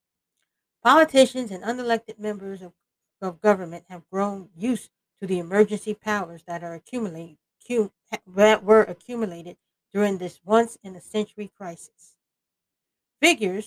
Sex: female